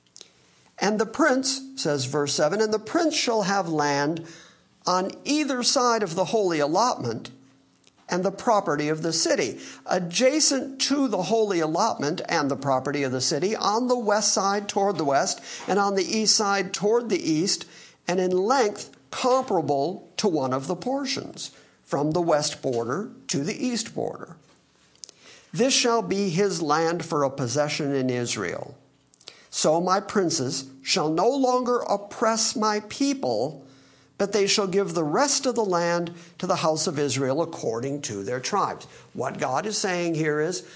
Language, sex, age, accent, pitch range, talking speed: English, male, 50-69, American, 150-215 Hz, 165 wpm